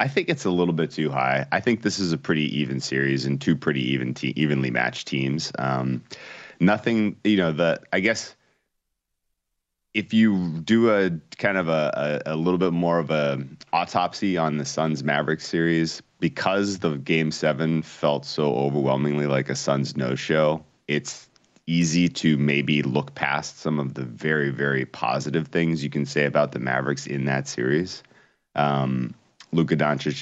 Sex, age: male, 30-49